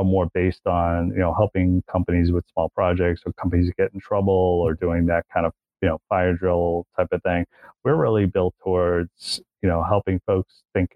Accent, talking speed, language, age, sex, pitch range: American, 195 wpm, English, 30-49, male, 85-95 Hz